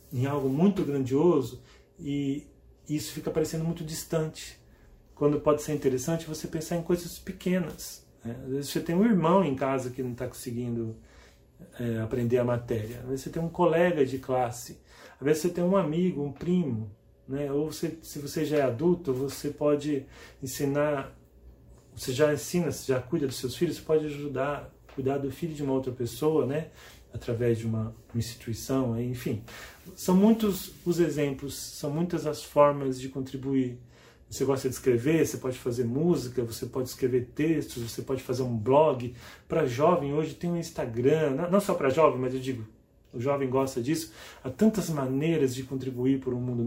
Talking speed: 185 wpm